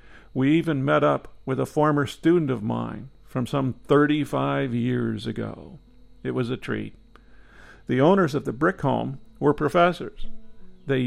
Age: 50-69